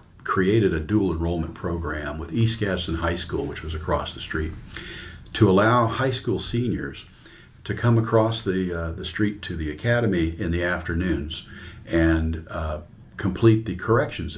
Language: English